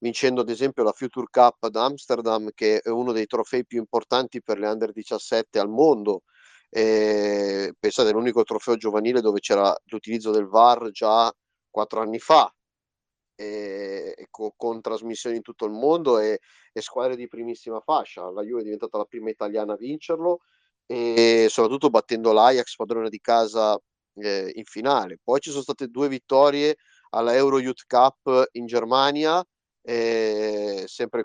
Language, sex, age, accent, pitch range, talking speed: Italian, male, 30-49, native, 110-135 Hz, 155 wpm